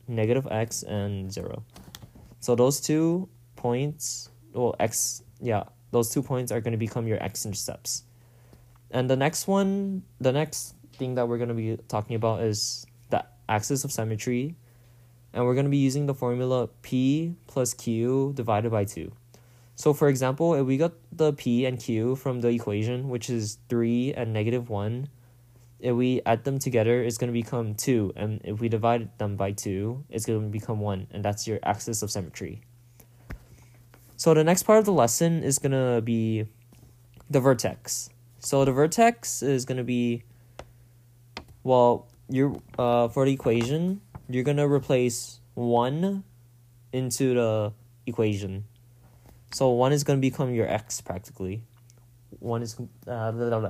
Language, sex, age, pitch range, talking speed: English, male, 20-39, 115-130 Hz, 165 wpm